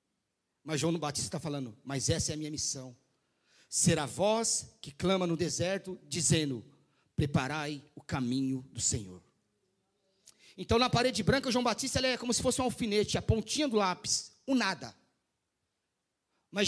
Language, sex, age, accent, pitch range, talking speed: Portuguese, male, 40-59, Brazilian, 150-235 Hz, 155 wpm